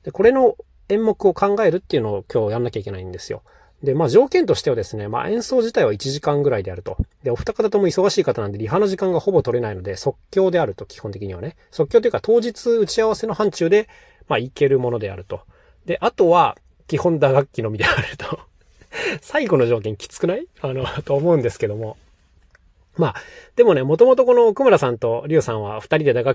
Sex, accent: male, native